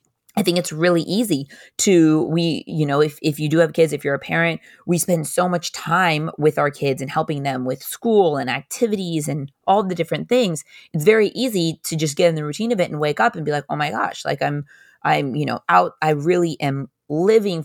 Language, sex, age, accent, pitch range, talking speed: English, female, 20-39, American, 145-175 Hz, 235 wpm